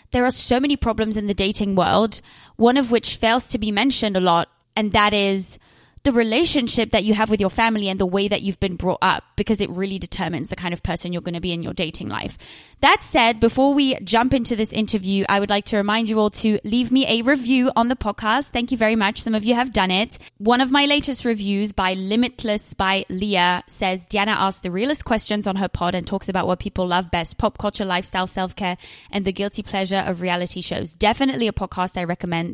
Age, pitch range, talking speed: 20-39, 185-235 Hz, 235 wpm